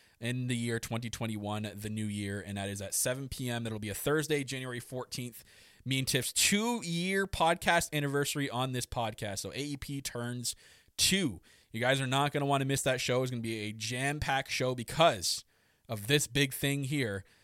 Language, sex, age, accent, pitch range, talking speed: English, male, 20-39, American, 120-155 Hz, 190 wpm